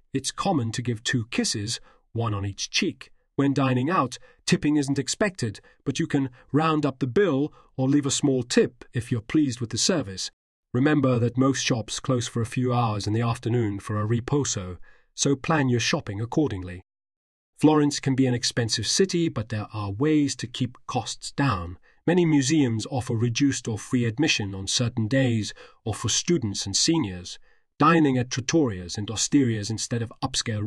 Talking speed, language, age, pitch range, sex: 180 wpm, English, 40-59, 115-145 Hz, male